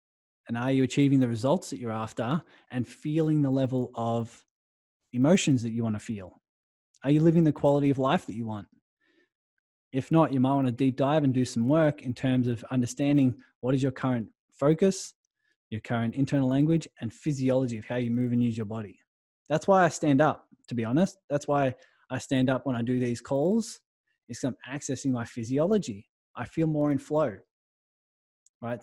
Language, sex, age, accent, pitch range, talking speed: English, male, 20-39, Australian, 120-140 Hz, 195 wpm